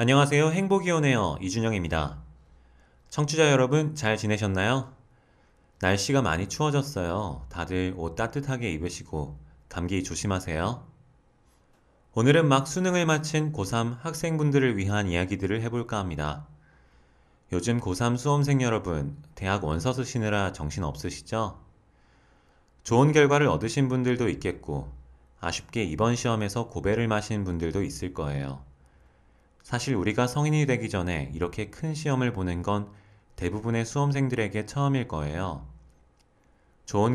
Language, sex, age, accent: Korean, male, 30-49, native